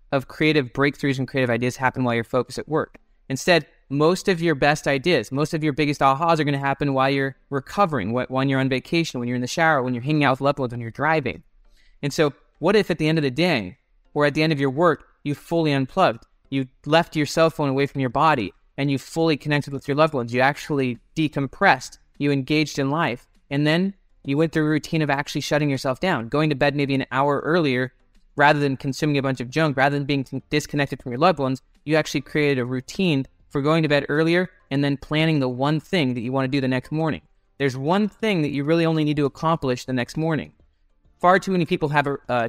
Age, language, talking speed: 20-39, English, 240 wpm